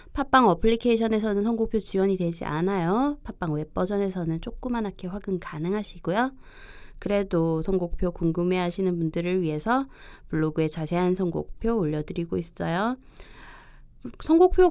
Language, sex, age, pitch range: Korean, female, 20-39, 160-230 Hz